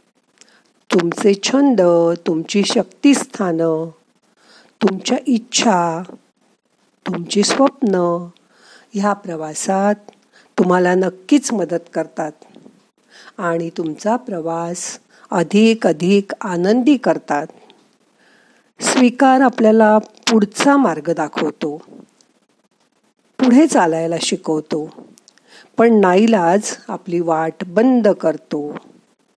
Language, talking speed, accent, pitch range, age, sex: Marathi, 60 wpm, native, 170-240 Hz, 50-69, female